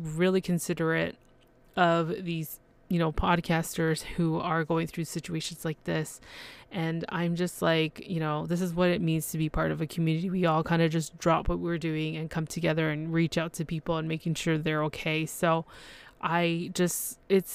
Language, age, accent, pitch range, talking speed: English, 20-39, American, 160-180 Hz, 195 wpm